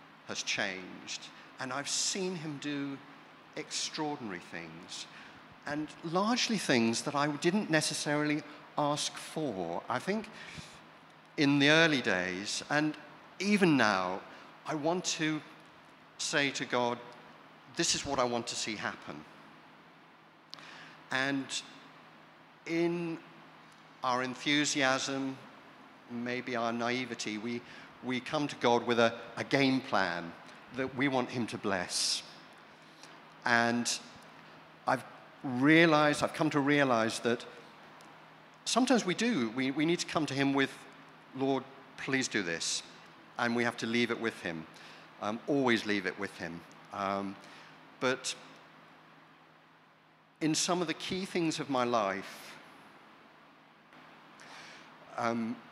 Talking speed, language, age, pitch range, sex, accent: 120 wpm, English, 50-69, 115-150 Hz, male, British